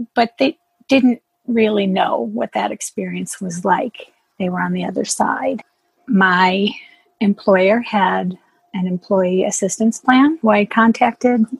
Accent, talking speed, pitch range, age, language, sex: American, 135 wpm, 180-240 Hz, 40-59, English, female